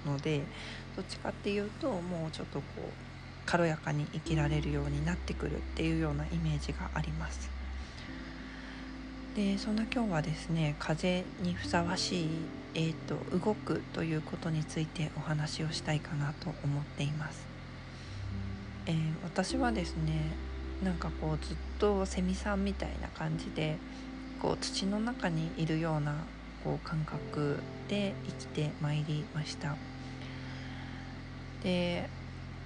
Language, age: Japanese, 40-59